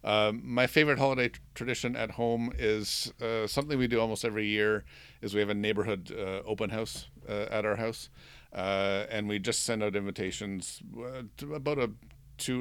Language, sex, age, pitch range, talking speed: English, male, 50-69, 95-115 Hz, 190 wpm